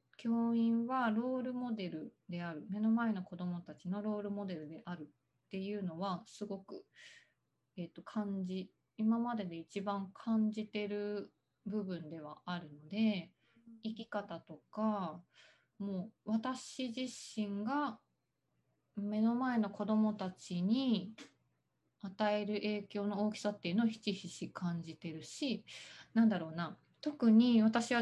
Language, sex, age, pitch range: Japanese, female, 20-39, 185-225 Hz